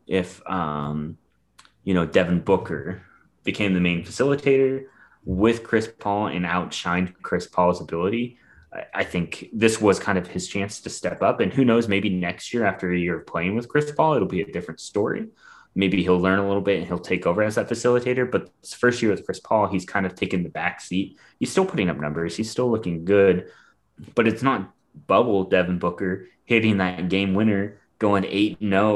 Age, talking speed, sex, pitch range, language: 20-39, 200 wpm, male, 90-110 Hz, English